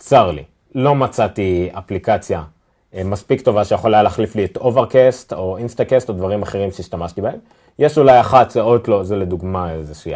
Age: 30-49